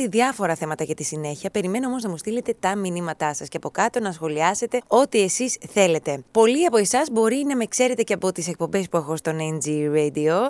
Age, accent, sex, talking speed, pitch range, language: 20-39, native, female, 210 wpm, 165-225 Hz, Greek